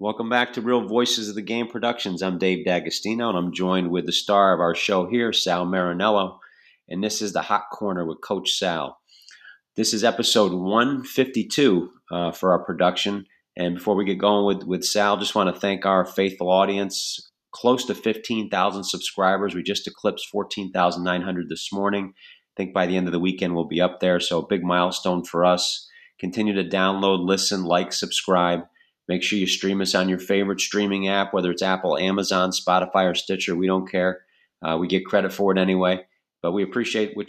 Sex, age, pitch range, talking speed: male, 40-59, 90-100 Hz, 195 wpm